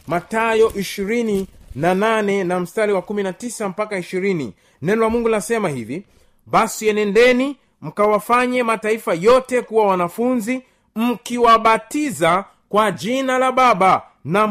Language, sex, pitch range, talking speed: Swahili, male, 185-235 Hz, 95 wpm